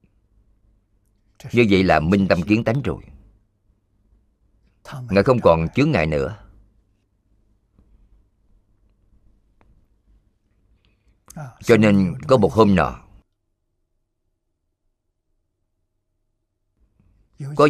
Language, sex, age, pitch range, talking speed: Vietnamese, male, 50-69, 95-105 Hz, 70 wpm